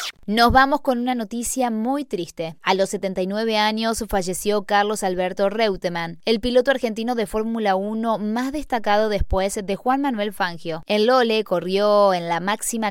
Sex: female